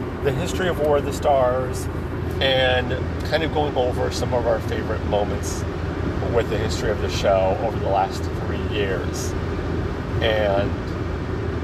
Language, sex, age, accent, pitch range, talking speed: English, male, 40-59, American, 90-120 Hz, 150 wpm